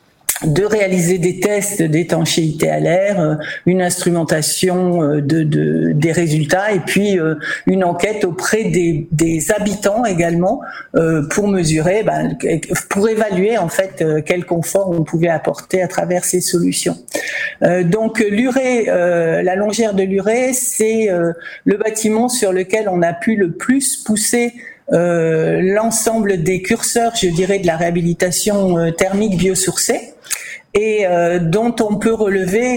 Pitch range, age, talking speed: 170-215 Hz, 60-79, 130 wpm